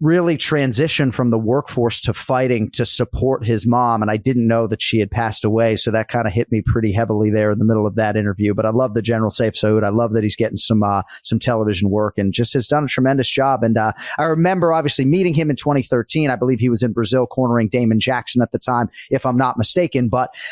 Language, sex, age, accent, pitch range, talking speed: English, male, 30-49, American, 115-150 Hz, 250 wpm